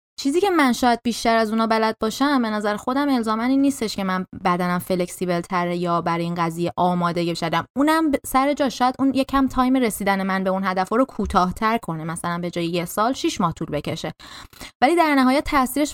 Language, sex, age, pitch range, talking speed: Persian, female, 20-39, 185-265 Hz, 195 wpm